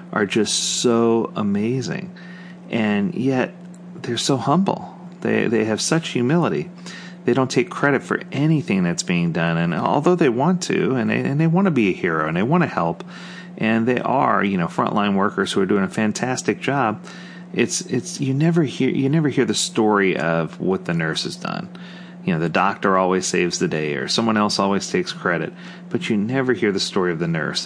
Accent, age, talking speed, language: American, 30-49, 205 wpm, English